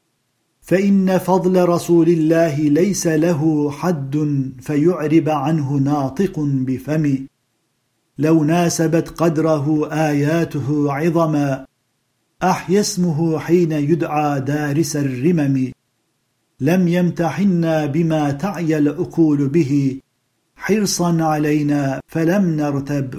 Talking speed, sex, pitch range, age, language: 85 wpm, male, 140-165 Hz, 50-69, Turkish